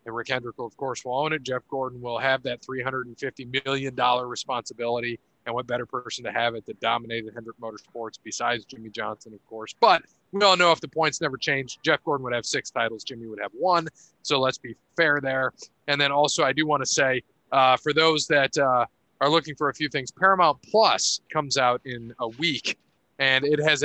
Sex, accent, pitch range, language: male, American, 125-160 Hz, English